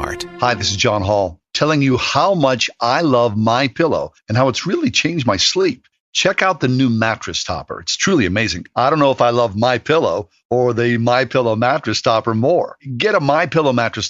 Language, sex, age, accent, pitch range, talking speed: English, male, 50-69, American, 105-145 Hz, 210 wpm